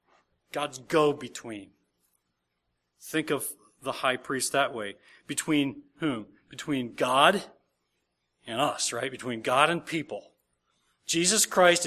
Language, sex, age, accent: English, male, 40-59, American